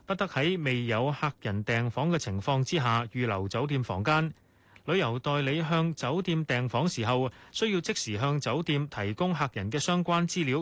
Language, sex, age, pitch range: Chinese, male, 30-49, 115-155 Hz